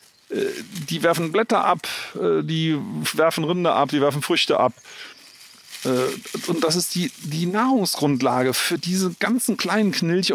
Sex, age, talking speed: male, 40-59, 135 wpm